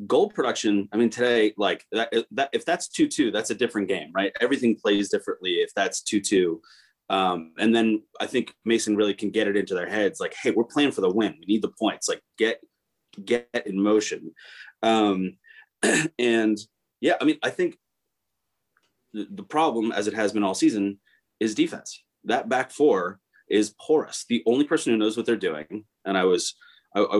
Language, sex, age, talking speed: English, male, 30-49, 195 wpm